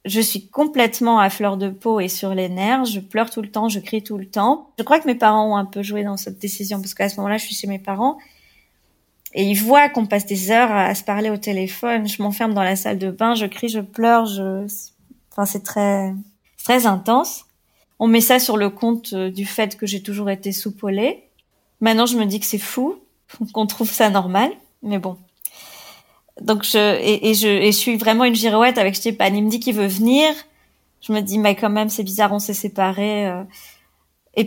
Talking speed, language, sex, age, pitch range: 225 wpm, French, female, 20-39, 200-235 Hz